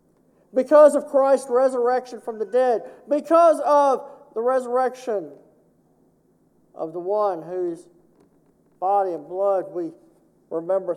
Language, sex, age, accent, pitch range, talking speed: English, male, 50-69, American, 185-255 Hz, 110 wpm